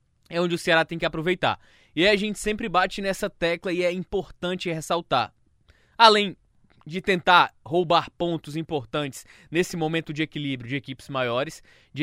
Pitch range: 145-195 Hz